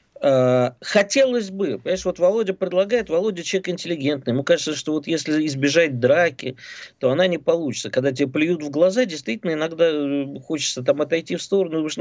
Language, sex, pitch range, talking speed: Russian, male, 135-195 Hz, 170 wpm